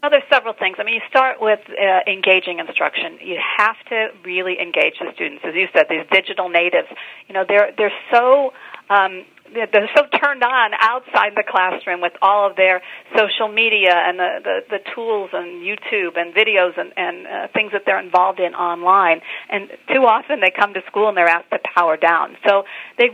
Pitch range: 180-240 Hz